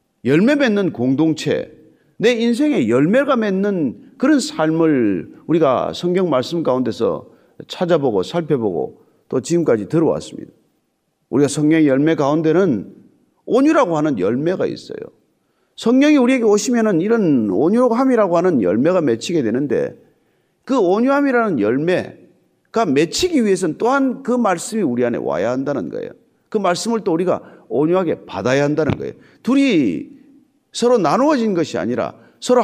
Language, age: Korean, 40-59